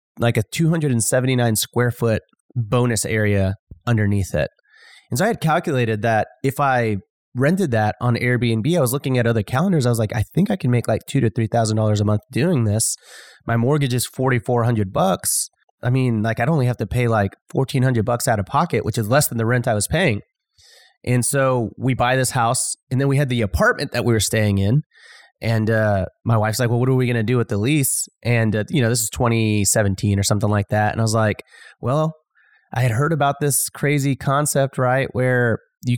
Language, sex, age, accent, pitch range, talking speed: English, male, 30-49, American, 110-135 Hz, 230 wpm